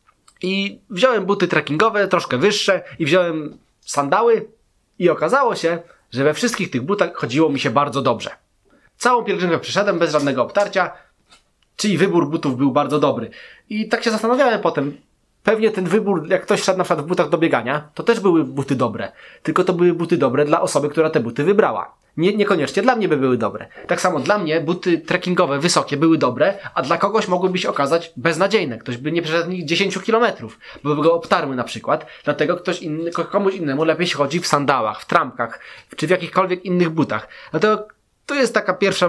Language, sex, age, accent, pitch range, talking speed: Polish, male, 20-39, native, 150-190 Hz, 190 wpm